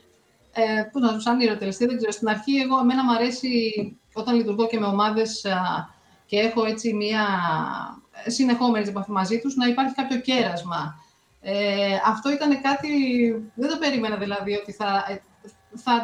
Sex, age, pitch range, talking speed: female, 30-49, 195-245 Hz, 150 wpm